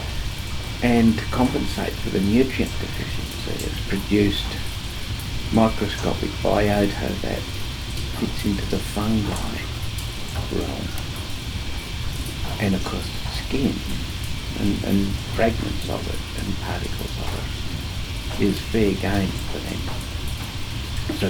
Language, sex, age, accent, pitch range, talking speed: English, male, 60-79, British, 95-110 Hz, 100 wpm